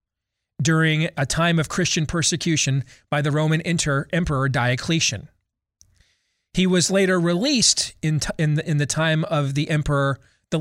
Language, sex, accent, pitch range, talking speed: English, male, American, 125-165 Hz, 130 wpm